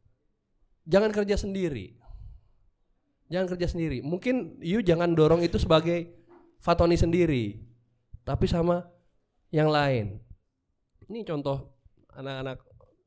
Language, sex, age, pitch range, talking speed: Indonesian, male, 20-39, 125-195 Hz, 95 wpm